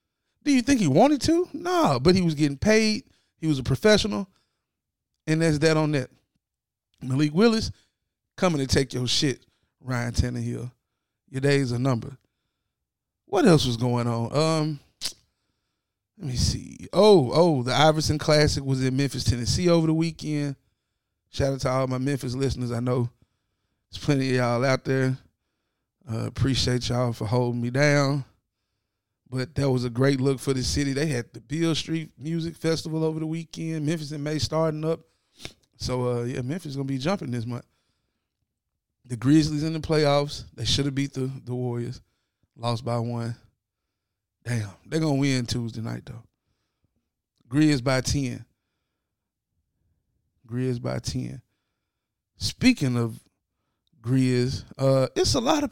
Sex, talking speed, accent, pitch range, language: male, 160 wpm, American, 120-150 Hz, English